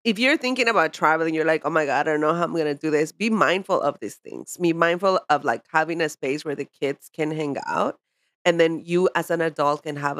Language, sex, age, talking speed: English, female, 30-49, 265 wpm